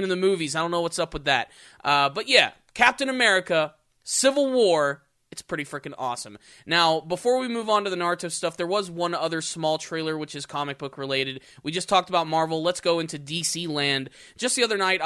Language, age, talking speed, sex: English, 20-39, 220 wpm, male